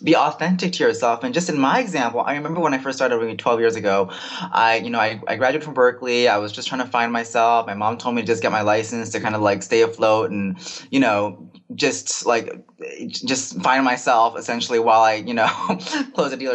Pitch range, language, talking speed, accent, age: 115-150 Hz, English, 235 wpm, American, 20-39